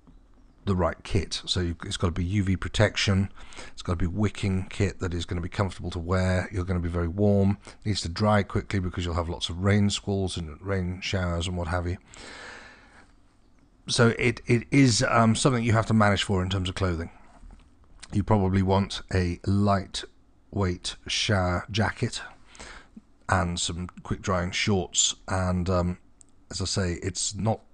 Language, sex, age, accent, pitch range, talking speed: English, male, 40-59, British, 90-110 Hz, 175 wpm